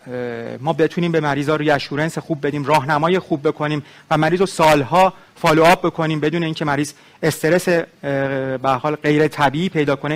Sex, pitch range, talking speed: male, 140-170 Hz, 170 wpm